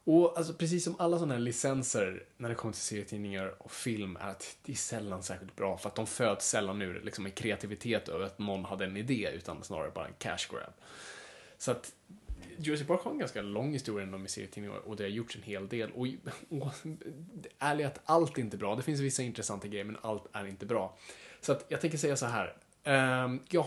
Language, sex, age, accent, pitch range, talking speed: Swedish, male, 20-39, Norwegian, 105-135 Hz, 225 wpm